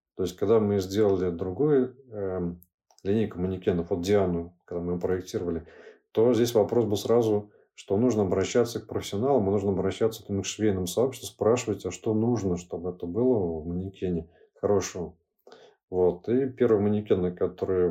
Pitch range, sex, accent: 90-110 Hz, male, native